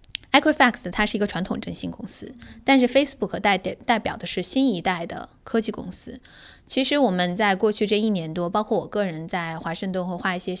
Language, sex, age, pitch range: Chinese, female, 20-39, 175-215 Hz